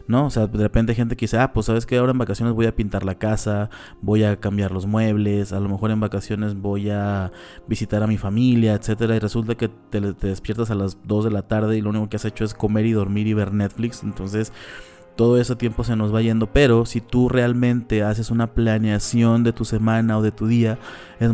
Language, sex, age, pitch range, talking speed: Spanish, male, 30-49, 105-115 Hz, 240 wpm